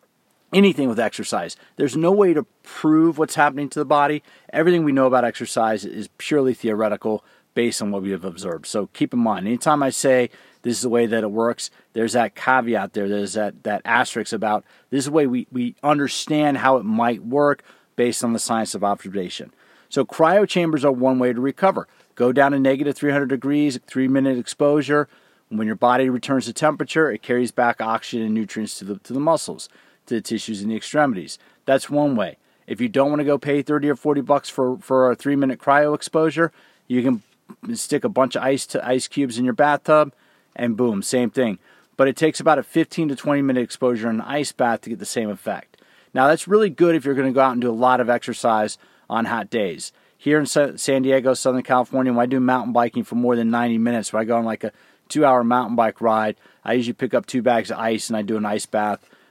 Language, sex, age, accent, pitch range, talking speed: English, male, 40-59, American, 115-145 Hz, 225 wpm